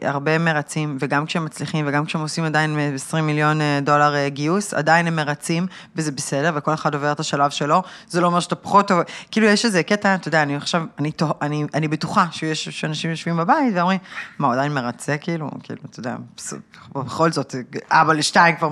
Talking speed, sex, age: 190 wpm, female, 20-39